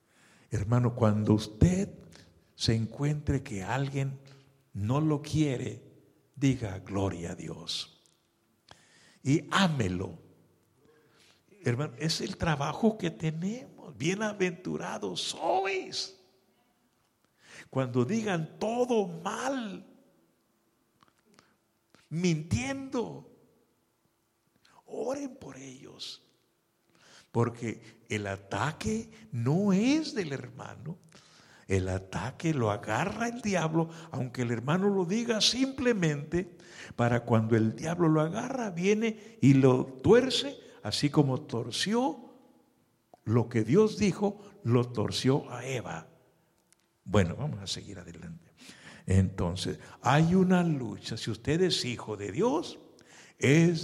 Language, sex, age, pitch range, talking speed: English, male, 60-79, 115-190 Hz, 100 wpm